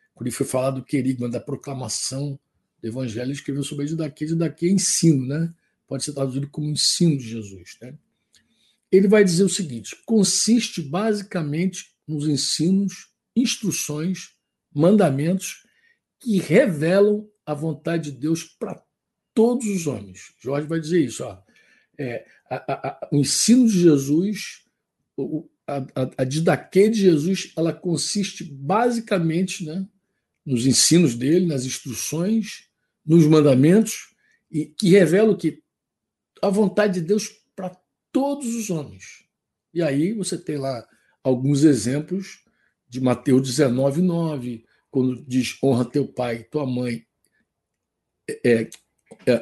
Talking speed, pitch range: 135 wpm, 130-185 Hz